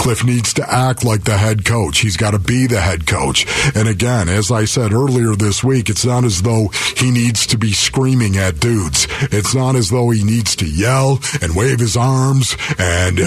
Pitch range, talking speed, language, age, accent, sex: 100-130 Hz, 215 wpm, English, 50-69, American, male